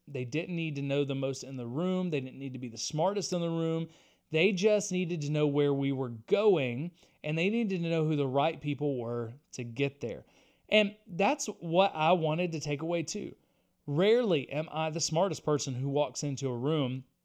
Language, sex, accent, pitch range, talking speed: English, male, American, 140-180 Hz, 215 wpm